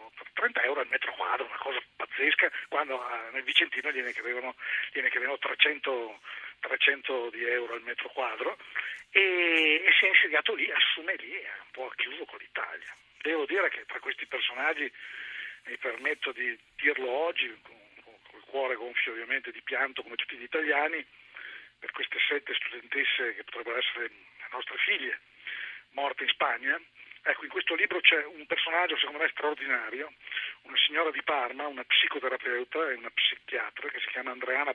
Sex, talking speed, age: male, 170 wpm, 50-69